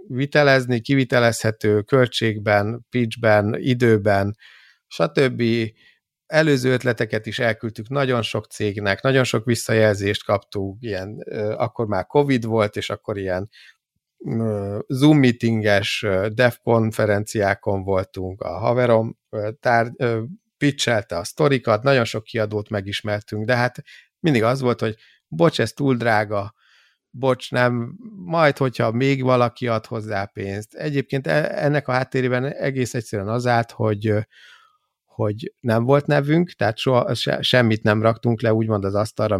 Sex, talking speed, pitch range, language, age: male, 130 wpm, 105-130 Hz, Hungarian, 50-69